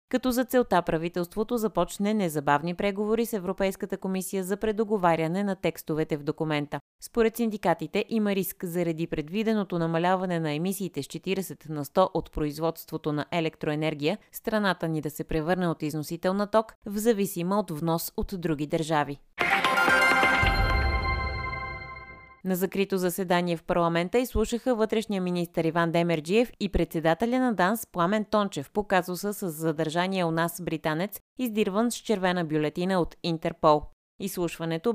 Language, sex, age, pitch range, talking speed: Bulgarian, female, 20-39, 160-205 Hz, 135 wpm